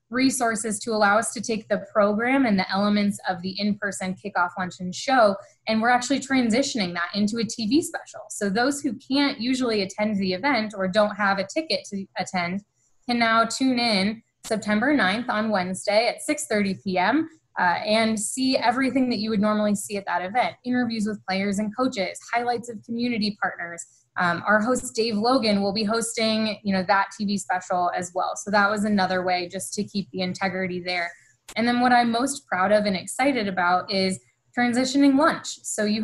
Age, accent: 20-39, American